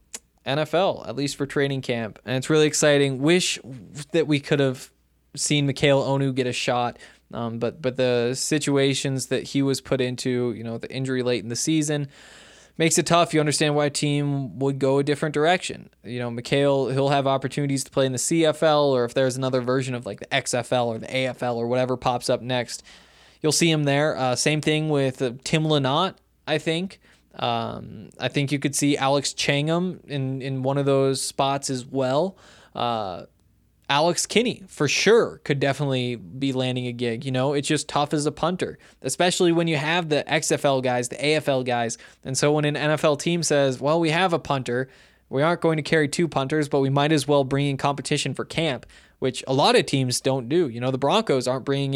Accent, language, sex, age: American, English, male, 20-39